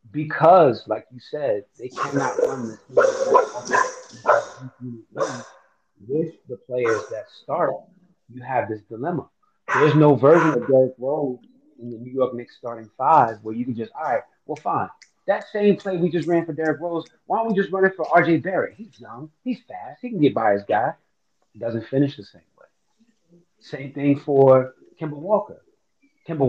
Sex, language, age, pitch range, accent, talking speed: male, English, 30-49, 125-165 Hz, American, 180 wpm